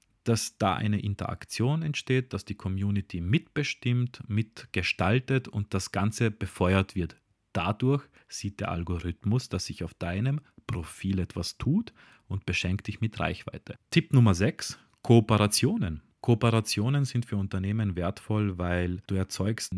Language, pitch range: German, 95-115 Hz